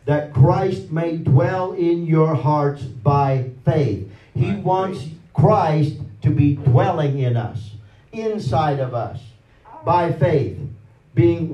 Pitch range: 135-160 Hz